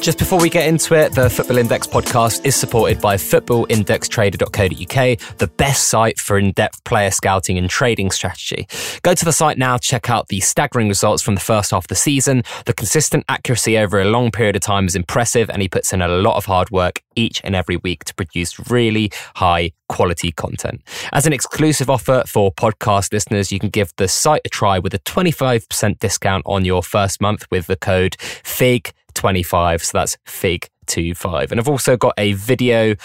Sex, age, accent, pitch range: male, 20-39, British, 95-130 Hz